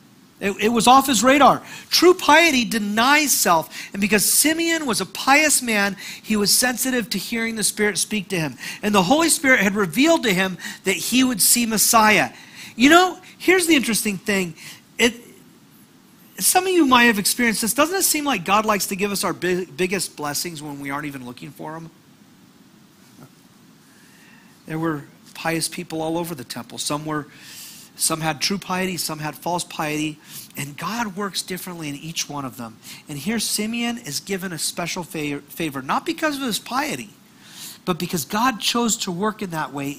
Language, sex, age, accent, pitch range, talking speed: English, male, 40-59, American, 160-230 Hz, 185 wpm